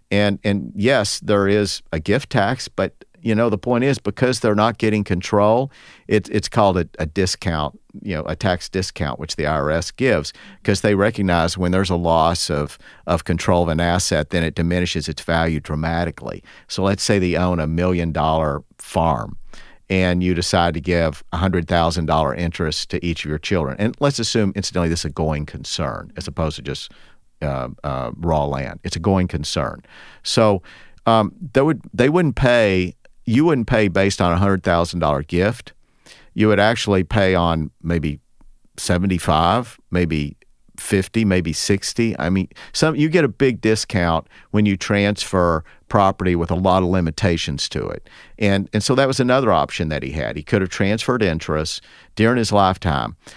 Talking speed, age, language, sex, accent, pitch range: 185 wpm, 50-69, English, male, American, 80-105 Hz